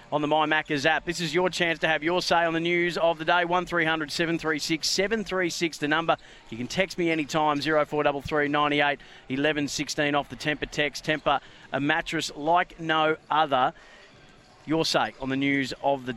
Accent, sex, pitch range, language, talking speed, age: Australian, male, 135-160 Hz, English, 180 wpm, 30-49